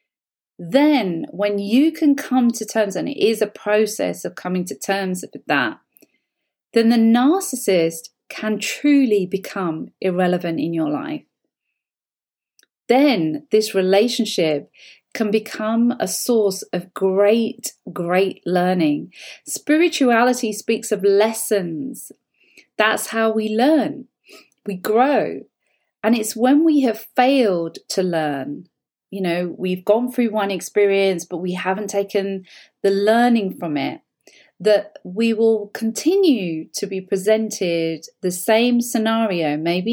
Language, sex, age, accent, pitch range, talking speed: English, female, 30-49, British, 185-235 Hz, 125 wpm